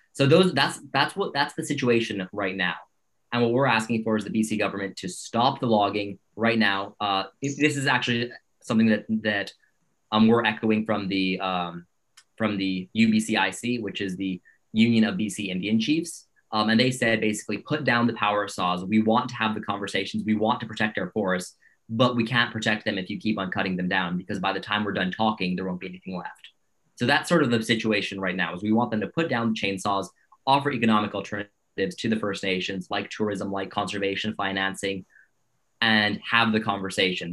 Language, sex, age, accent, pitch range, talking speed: English, male, 20-39, American, 95-115 Hz, 205 wpm